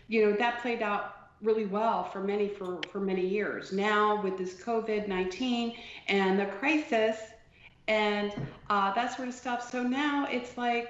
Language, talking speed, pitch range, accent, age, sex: English, 165 wpm, 190-230 Hz, American, 40-59, female